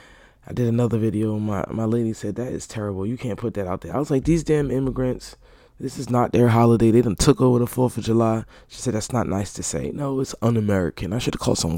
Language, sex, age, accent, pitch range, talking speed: English, male, 20-39, American, 105-135 Hz, 260 wpm